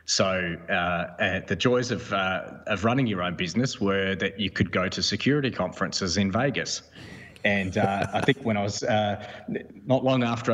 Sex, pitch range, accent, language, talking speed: male, 100-125 Hz, Australian, English, 190 wpm